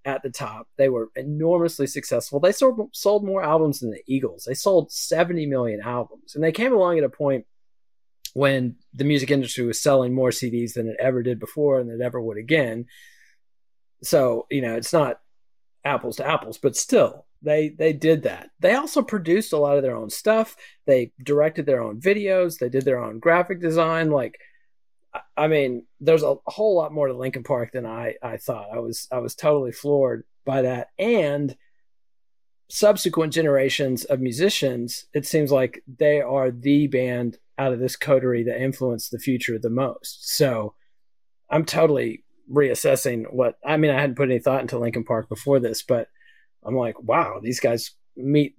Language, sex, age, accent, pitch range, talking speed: English, male, 40-59, American, 125-160 Hz, 185 wpm